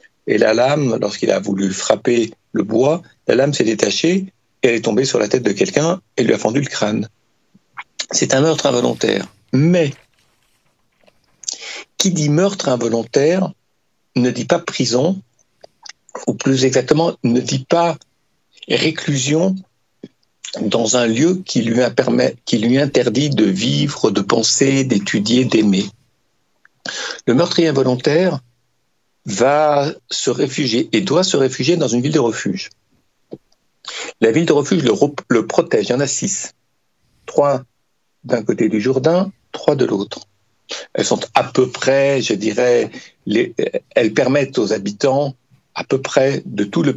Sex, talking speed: male, 145 wpm